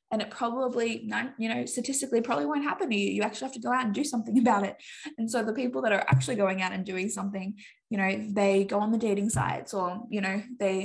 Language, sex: English, female